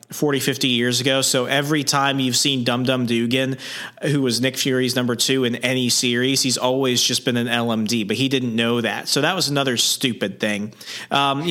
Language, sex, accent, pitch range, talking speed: English, male, American, 120-150 Hz, 200 wpm